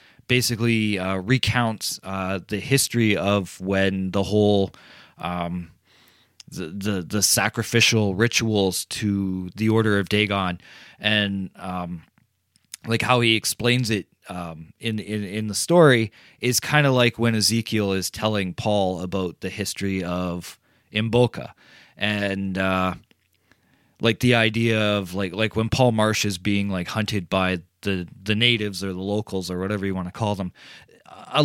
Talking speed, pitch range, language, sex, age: 150 wpm, 95-115 Hz, English, male, 20-39